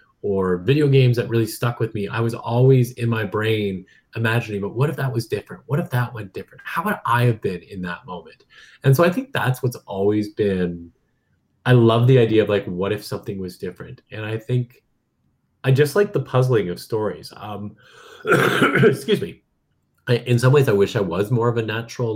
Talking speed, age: 210 wpm, 30-49